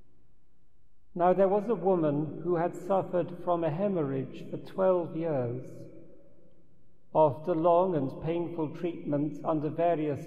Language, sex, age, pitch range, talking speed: English, male, 50-69, 150-180 Hz, 125 wpm